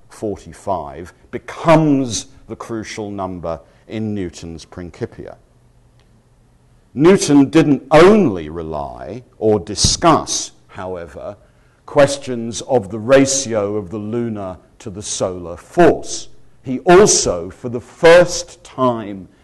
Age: 50-69